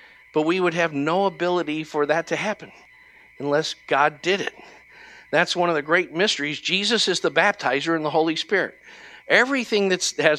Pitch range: 150-200 Hz